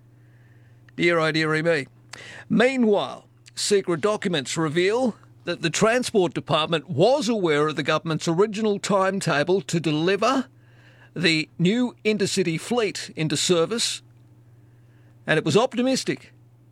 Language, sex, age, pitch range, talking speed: English, male, 50-69, 125-195 Hz, 110 wpm